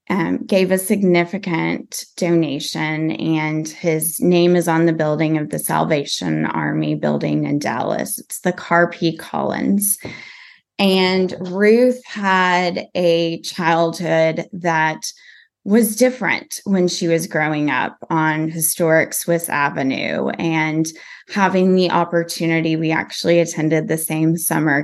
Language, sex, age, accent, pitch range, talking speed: English, female, 20-39, American, 160-185 Hz, 120 wpm